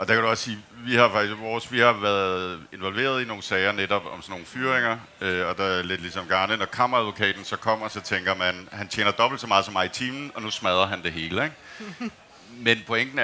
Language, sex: Danish, male